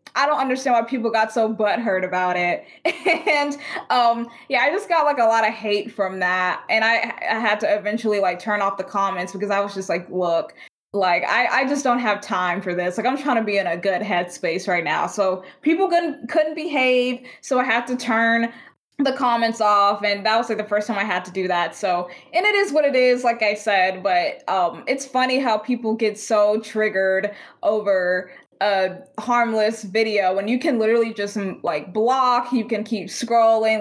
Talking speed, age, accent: 210 wpm, 20-39, American